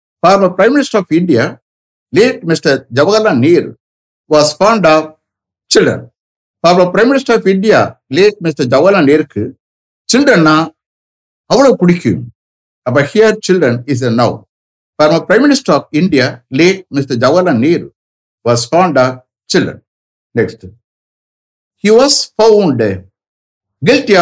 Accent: Indian